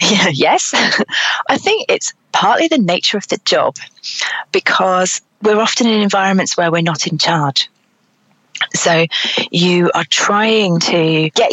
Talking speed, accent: 130 wpm, British